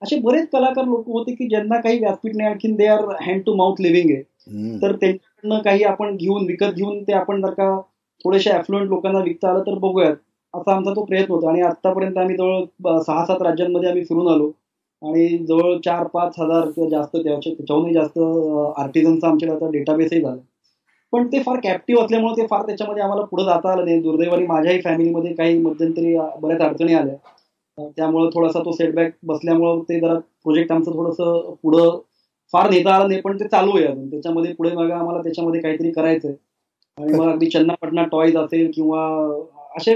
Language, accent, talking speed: Marathi, native, 180 wpm